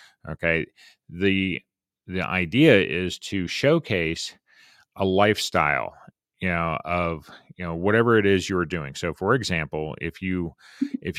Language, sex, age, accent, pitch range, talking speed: English, male, 30-49, American, 90-115 Hz, 135 wpm